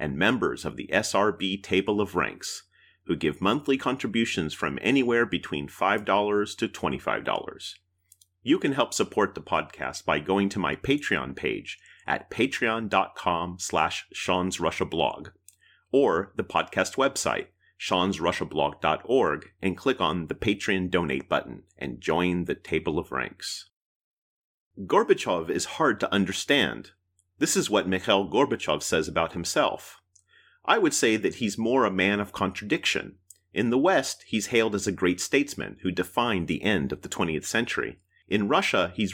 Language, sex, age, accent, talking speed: English, male, 30-49, American, 145 wpm